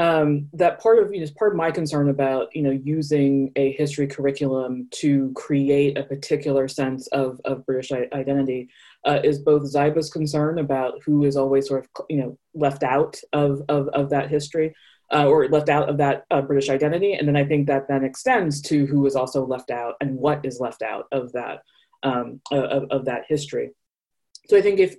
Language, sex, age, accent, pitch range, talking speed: English, female, 20-39, American, 135-155 Hz, 205 wpm